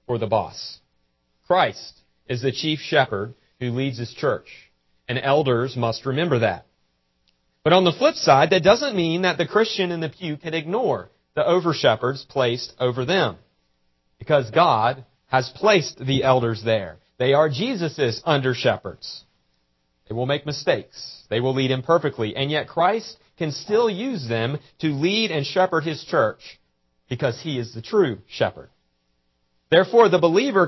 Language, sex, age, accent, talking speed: English, male, 40-59, American, 155 wpm